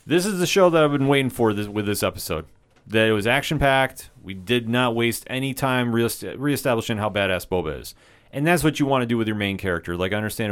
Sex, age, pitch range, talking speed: male, 30-49, 95-135 Hz, 245 wpm